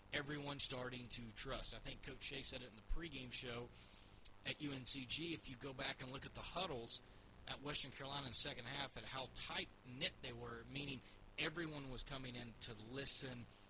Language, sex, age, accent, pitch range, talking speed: English, male, 30-49, American, 110-135 Hz, 195 wpm